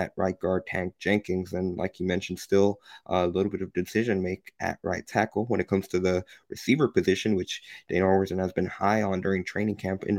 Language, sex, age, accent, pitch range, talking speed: English, male, 20-39, American, 95-100 Hz, 200 wpm